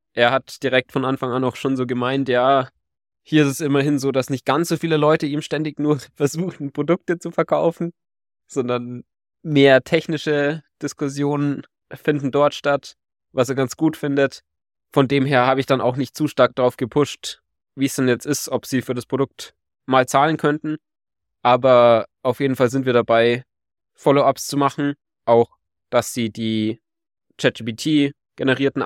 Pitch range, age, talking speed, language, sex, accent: 125-150 Hz, 20-39, 170 wpm, German, male, German